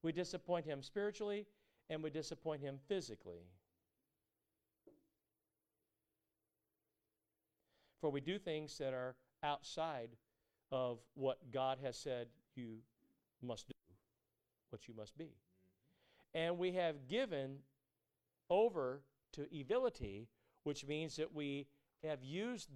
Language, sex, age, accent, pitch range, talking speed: English, male, 50-69, American, 110-155 Hz, 110 wpm